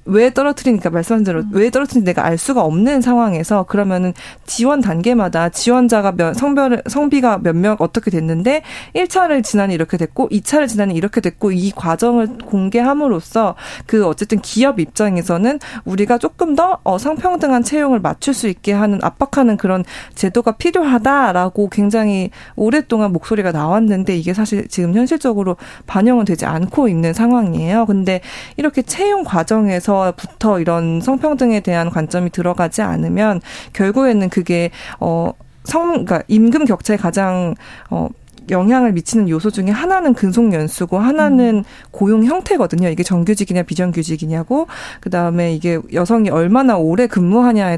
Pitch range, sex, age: 180-245 Hz, female, 40-59